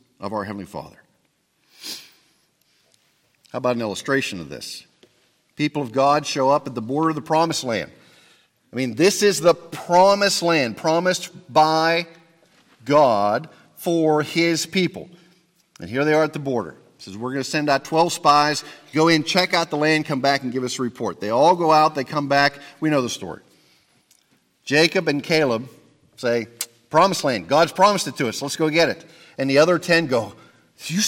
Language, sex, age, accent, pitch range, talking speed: English, male, 50-69, American, 140-185 Hz, 185 wpm